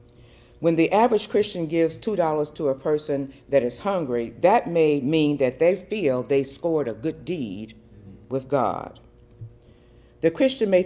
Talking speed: 160 wpm